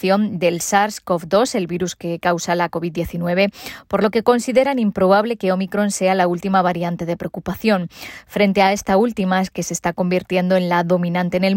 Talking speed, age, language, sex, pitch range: 175 wpm, 20-39, Spanish, female, 180-215 Hz